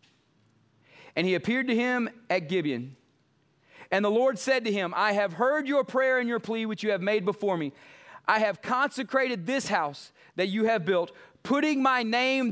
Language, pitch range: English, 155-220 Hz